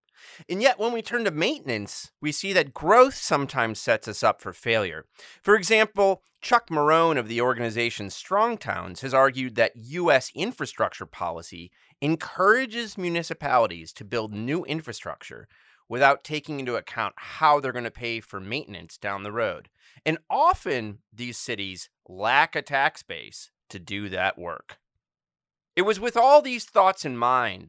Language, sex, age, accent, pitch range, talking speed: English, male, 30-49, American, 115-190 Hz, 155 wpm